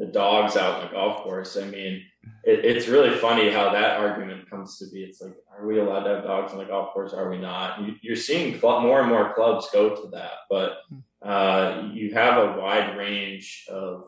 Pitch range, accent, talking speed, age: 100-105 Hz, American, 220 wpm, 20-39